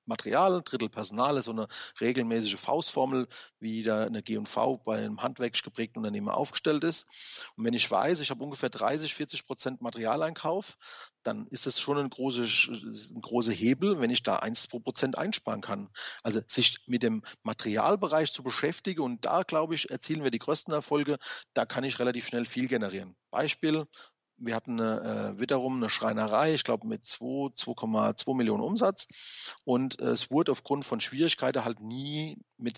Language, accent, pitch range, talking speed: German, German, 115-150 Hz, 175 wpm